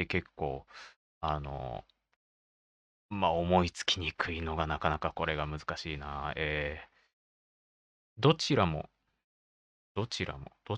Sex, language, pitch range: male, Japanese, 70-110 Hz